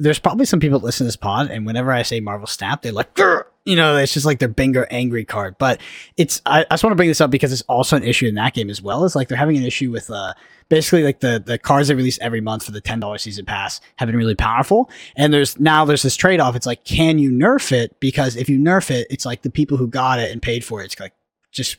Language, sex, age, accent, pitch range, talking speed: English, male, 20-39, American, 115-150 Hz, 290 wpm